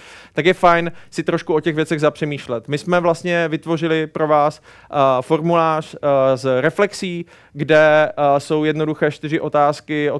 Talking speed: 140 wpm